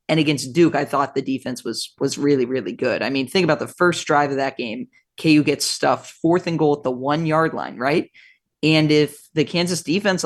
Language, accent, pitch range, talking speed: English, American, 140-160 Hz, 220 wpm